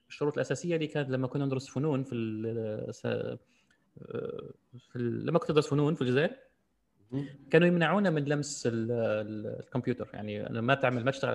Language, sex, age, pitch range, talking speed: Arabic, male, 30-49, 125-160 Hz, 145 wpm